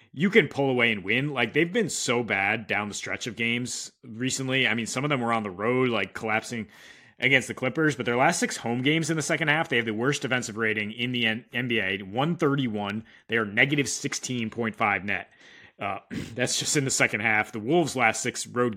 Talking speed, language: 215 wpm, English